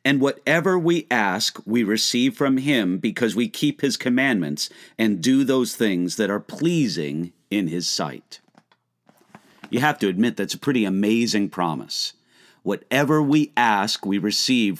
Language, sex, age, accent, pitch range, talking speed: English, male, 50-69, American, 115-165 Hz, 150 wpm